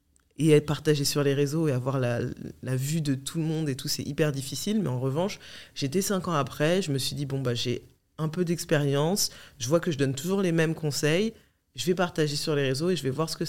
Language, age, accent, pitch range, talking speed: French, 20-39, French, 130-165 Hz, 260 wpm